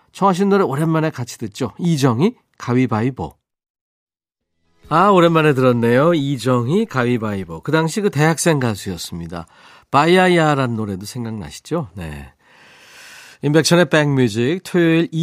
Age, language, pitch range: 40-59, Korean, 110-165 Hz